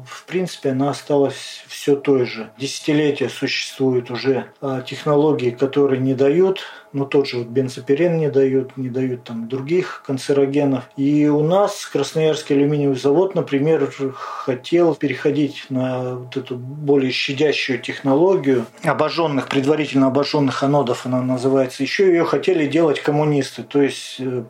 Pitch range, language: 135-155 Hz, Russian